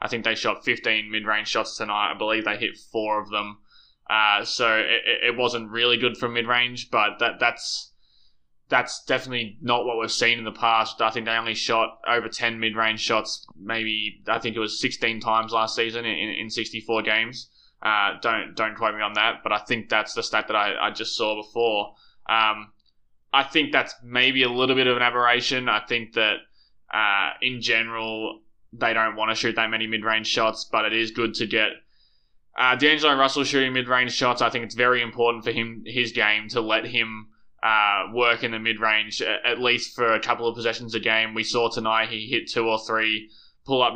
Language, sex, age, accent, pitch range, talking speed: English, male, 20-39, Australian, 110-120 Hz, 205 wpm